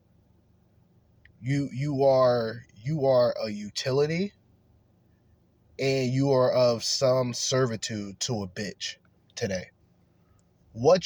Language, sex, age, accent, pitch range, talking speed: English, male, 20-39, American, 105-135 Hz, 100 wpm